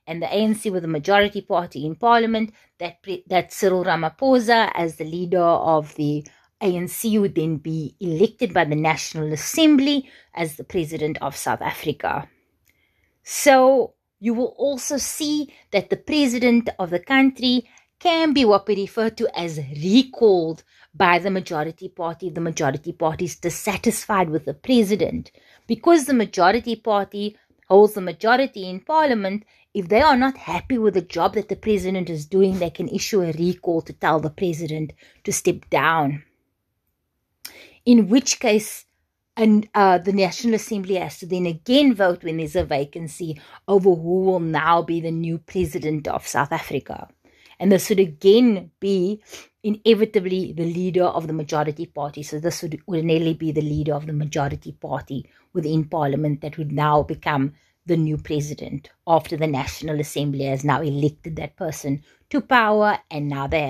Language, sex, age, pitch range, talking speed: English, female, 30-49, 155-215 Hz, 165 wpm